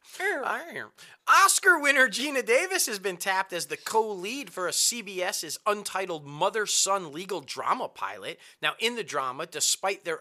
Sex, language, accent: male, English, American